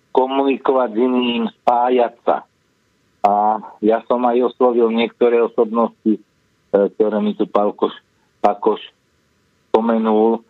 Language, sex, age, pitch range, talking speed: Slovak, male, 50-69, 105-130 Hz, 95 wpm